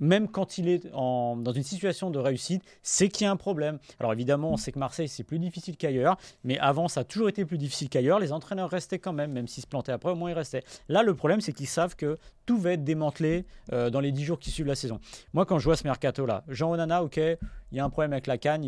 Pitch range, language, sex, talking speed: 125-170 Hz, French, male, 275 wpm